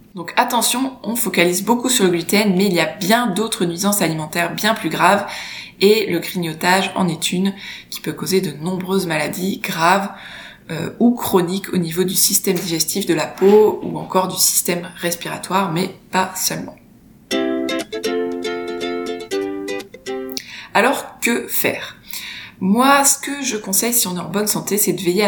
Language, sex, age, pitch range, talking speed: French, female, 20-39, 170-205 Hz, 160 wpm